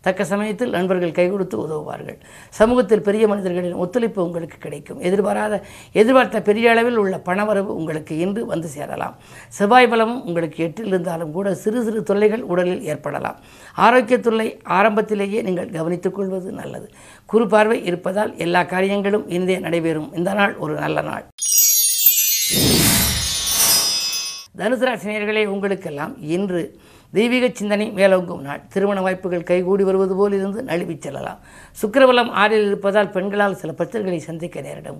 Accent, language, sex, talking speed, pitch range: native, Tamil, female, 125 wpm, 175-215 Hz